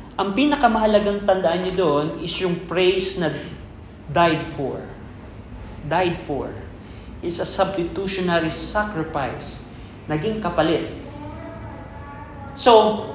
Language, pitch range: Filipino, 150-210 Hz